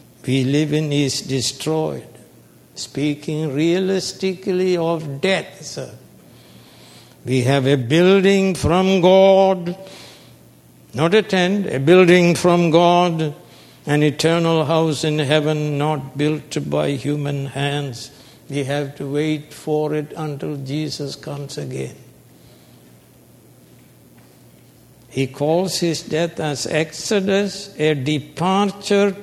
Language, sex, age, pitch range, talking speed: English, male, 60-79, 145-200 Hz, 105 wpm